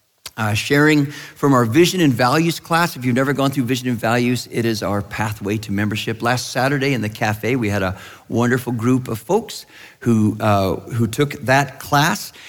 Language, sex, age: English, male, 50-69